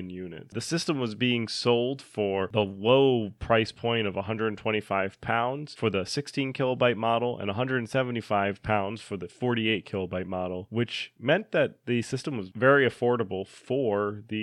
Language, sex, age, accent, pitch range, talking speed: English, male, 30-49, American, 105-130 Hz, 155 wpm